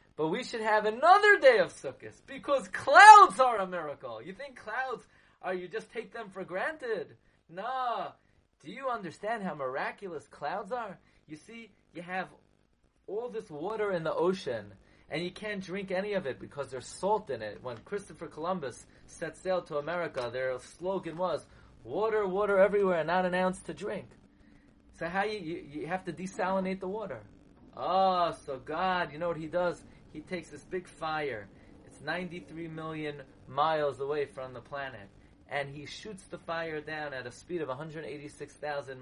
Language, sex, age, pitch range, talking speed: English, male, 30-49, 145-210 Hz, 175 wpm